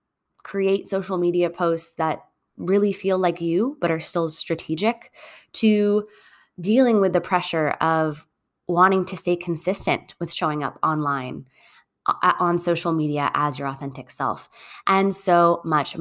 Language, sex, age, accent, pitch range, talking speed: English, female, 20-39, American, 160-210 Hz, 140 wpm